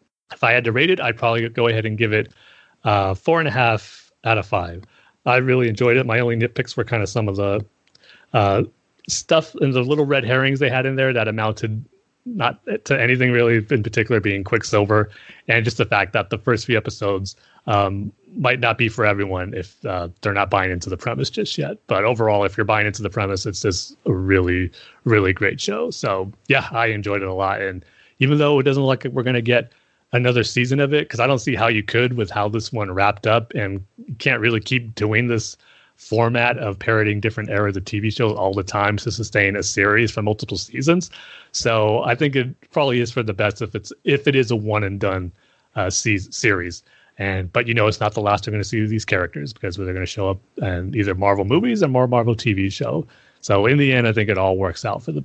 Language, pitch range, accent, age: English, 100-125 Hz, American, 30-49